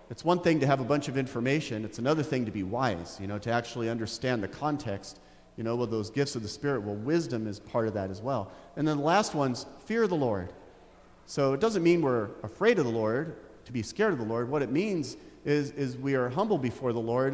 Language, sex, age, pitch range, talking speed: English, male, 40-59, 115-150 Hz, 255 wpm